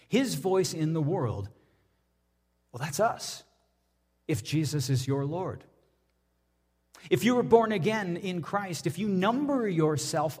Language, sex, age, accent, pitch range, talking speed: English, male, 40-59, American, 125-195 Hz, 140 wpm